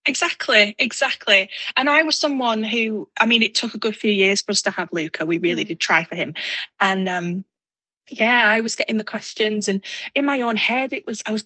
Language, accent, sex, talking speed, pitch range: English, British, female, 225 wpm, 185-235 Hz